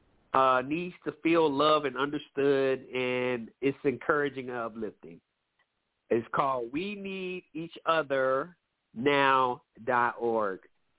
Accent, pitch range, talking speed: American, 135-185 Hz, 115 wpm